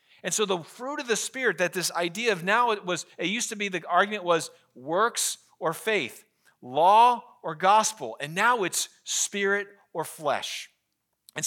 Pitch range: 165-215 Hz